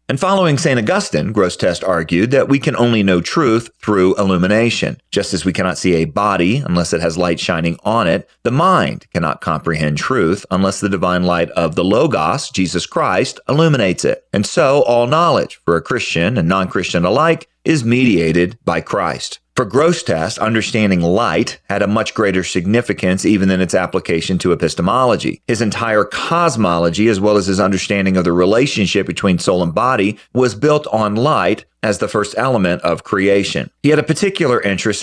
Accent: American